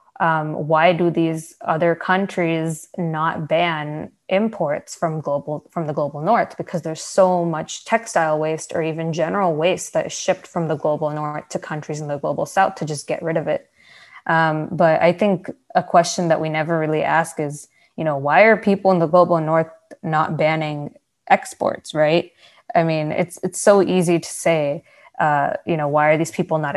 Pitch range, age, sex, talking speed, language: 150-180 Hz, 20-39, female, 190 wpm, English